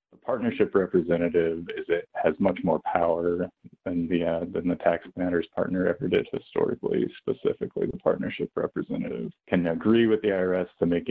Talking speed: 165 wpm